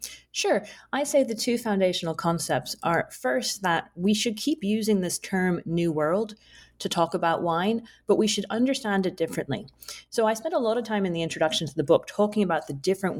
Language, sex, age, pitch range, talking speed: English, female, 30-49, 145-200 Hz, 205 wpm